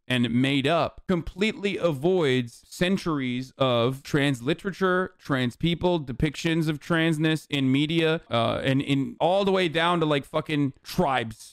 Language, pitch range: English, 125-155 Hz